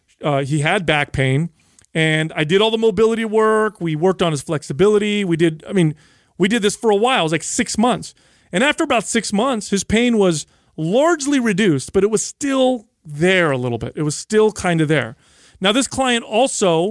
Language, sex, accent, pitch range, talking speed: English, male, American, 145-200 Hz, 215 wpm